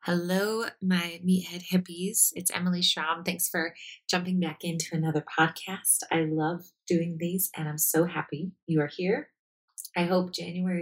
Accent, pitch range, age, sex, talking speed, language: American, 155-185 Hz, 20-39, female, 155 wpm, English